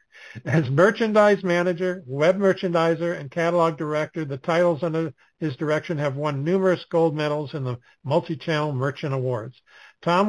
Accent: American